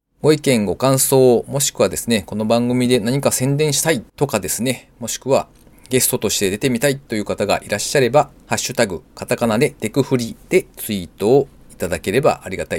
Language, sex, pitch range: Japanese, male, 110-165 Hz